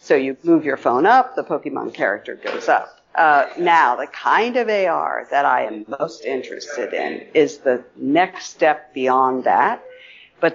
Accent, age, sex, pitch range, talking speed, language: American, 50-69, female, 140-210 Hz, 170 wpm, English